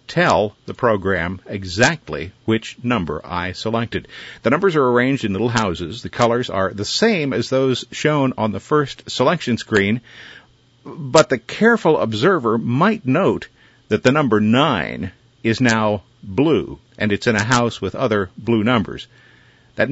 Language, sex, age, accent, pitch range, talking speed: English, male, 50-69, American, 100-125 Hz, 155 wpm